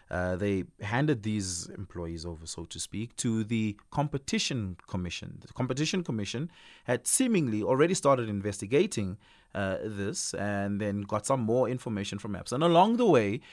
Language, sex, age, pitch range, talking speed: English, male, 30-49, 90-125 Hz, 155 wpm